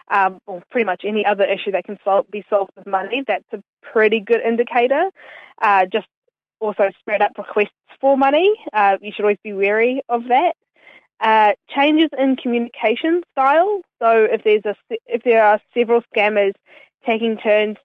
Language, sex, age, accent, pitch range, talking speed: English, female, 10-29, Australian, 200-235 Hz, 175 wpm